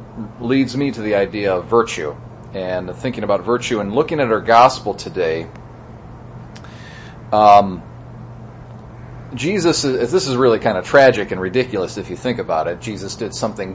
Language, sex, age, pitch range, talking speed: English, male, 40-59, 105-130 Hz, 155 wpm